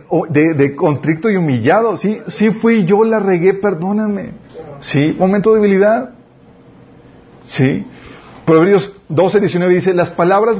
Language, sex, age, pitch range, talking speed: Spanish, male, 40-59, 135-185 Hz, 130 wpm